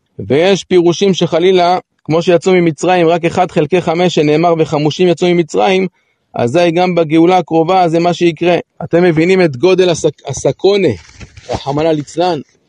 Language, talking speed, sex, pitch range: Hebrew, 135 wpm, male, 160-185 Hz